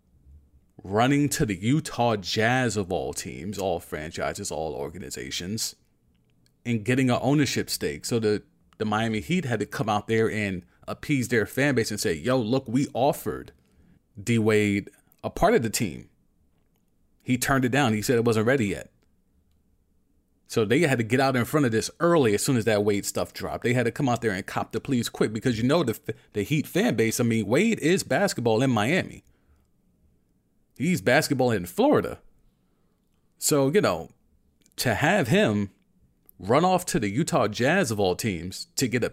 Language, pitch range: English, 100-130 Hz